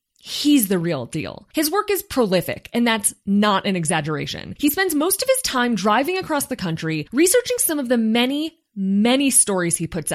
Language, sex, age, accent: English, female, 20-39, American